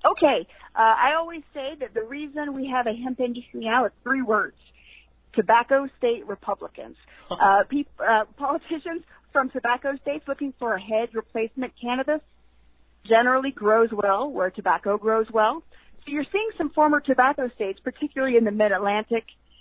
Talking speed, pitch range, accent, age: 155 wpm, 210-275 Hz, American, 40-59